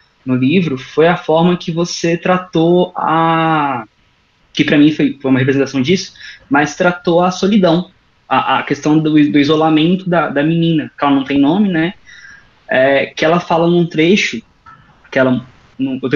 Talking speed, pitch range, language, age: 165 wpm, 145-175 Hz, Portuguese, 20-39